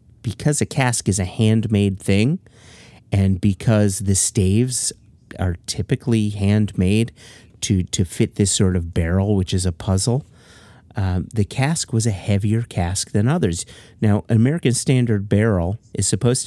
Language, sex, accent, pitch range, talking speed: English, male, American, 95-115 Hz, 150 wpm